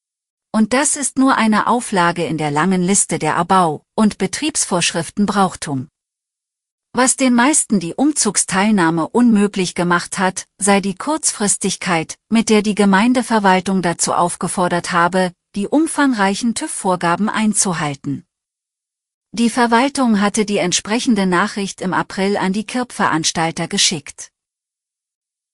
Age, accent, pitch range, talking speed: 40-59, German, 175-225 Hz, 115 wpm